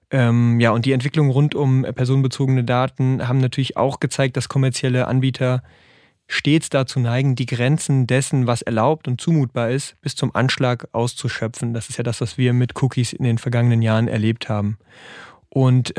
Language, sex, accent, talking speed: German, male, German, 170 wpm